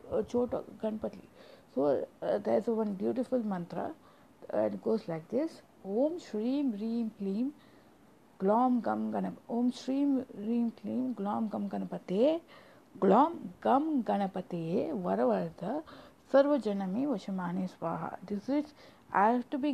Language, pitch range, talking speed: English, 195-260 Hz, 125 wpm